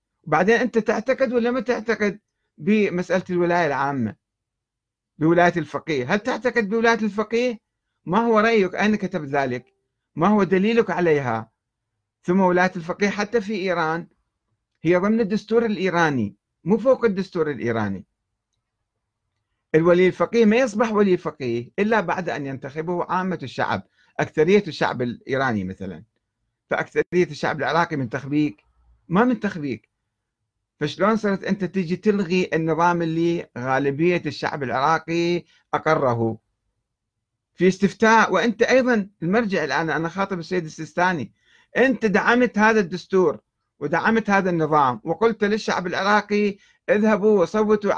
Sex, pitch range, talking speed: male, 125-205 Hz, 120 wpm